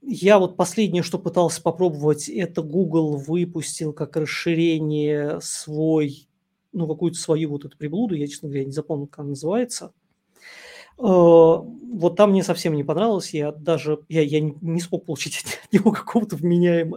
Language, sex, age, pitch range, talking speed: Russian, male, 20-39, 155-195 Hz, 150 wpm